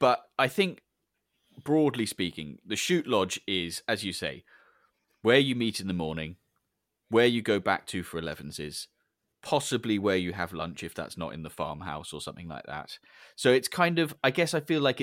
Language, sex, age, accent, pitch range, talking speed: English, male, 30-49, British, 90-115 Hz, 195 wpm